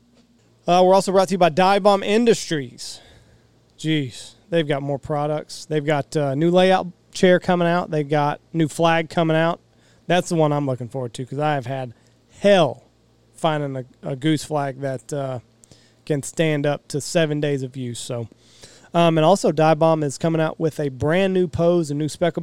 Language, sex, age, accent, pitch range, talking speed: English, male, 30-49, American, 135-165 Hz, 200 wpm